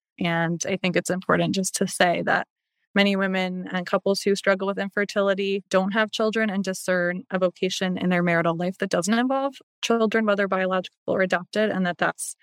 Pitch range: 185-220 Hz